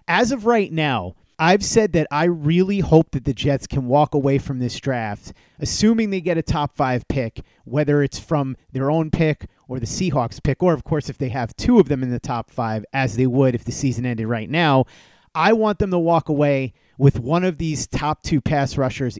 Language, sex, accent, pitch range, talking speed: English, male, American, 135-170 Hz, 225 wpm